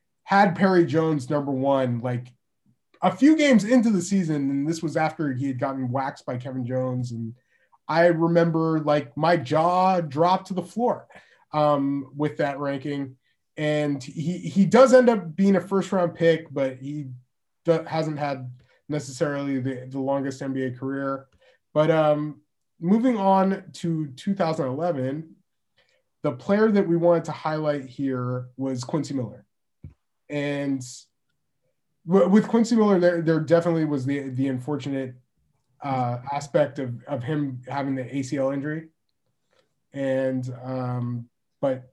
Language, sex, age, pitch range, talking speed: English, male, 20-39, 135-170 Hz, 140 wpm